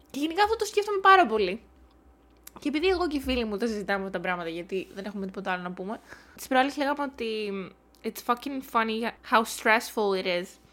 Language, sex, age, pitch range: Greek, female, 20-39, 200-245 Hz